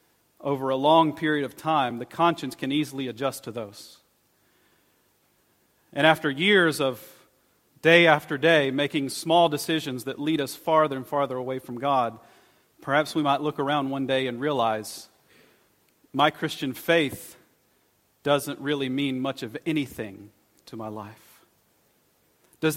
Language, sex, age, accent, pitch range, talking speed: English, male, 40-59, American, 140-180 Hz, 140 wpm